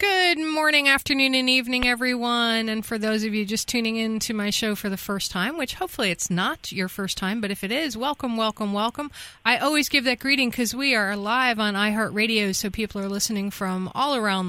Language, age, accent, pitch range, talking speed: English, 30-49, American, 195-245 Hz, 220 wpm